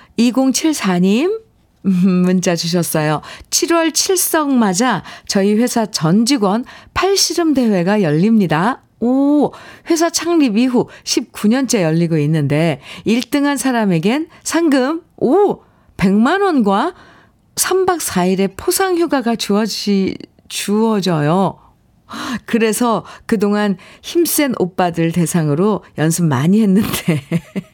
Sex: female